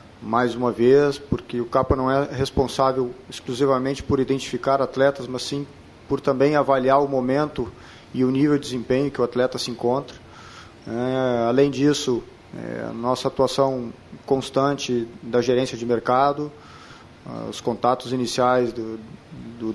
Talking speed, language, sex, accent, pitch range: 135 wpm, Portuguese, male, Brazilian, 120-135 Hz